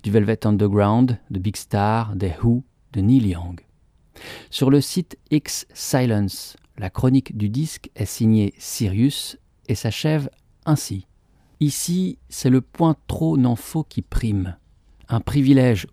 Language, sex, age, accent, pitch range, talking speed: French, male, 50-69, French, 100-135 Hz, 140 wpm